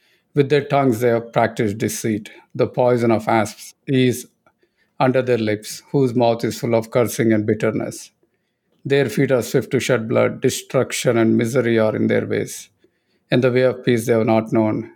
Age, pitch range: 50-69, 115-140 Hz